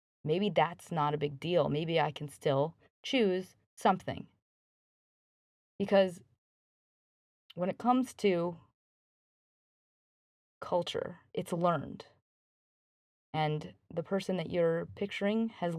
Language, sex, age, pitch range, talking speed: English, female, 30-49, 145-185 Hz, 105 wpm